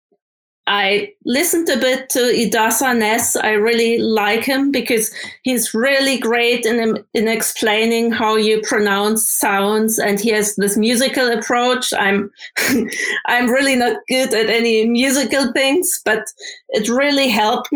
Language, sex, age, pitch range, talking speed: English, female, 30-49, 215-250 Hz, 140 wpm